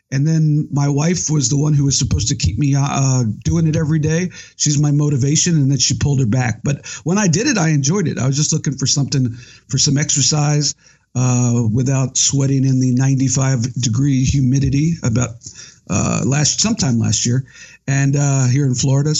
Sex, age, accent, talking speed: male, 50-69, American, 195 wpm